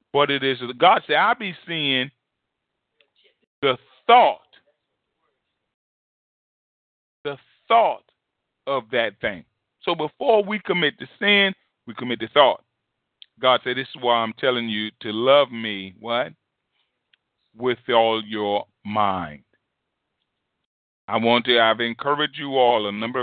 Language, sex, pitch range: English, male, 115-150 Hz